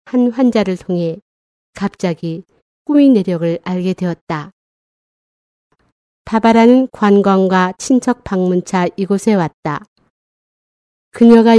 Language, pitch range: Korean, 180-225 Hz